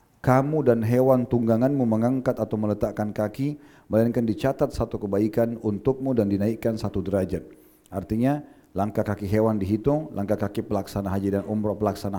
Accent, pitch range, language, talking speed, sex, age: native, 100-120 Hz, Indonesian, 145 wpm, male, 40-59